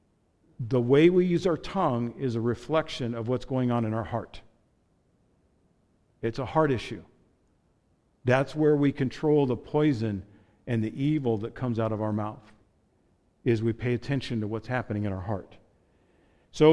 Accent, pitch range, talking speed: American, 115-150 Hz, 165 wpm